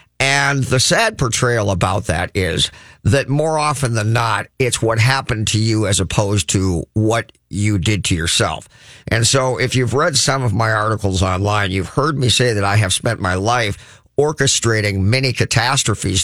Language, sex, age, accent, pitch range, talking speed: English, male, 50-69, American, 105-130 Hz, 175 wpm